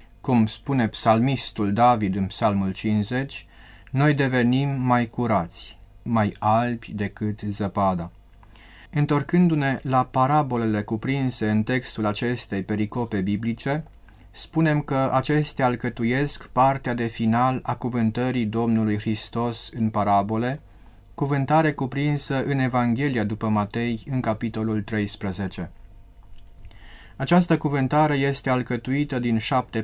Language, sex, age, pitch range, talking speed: Romanian, male, 30-49, 105-130 Hz, 105 wpm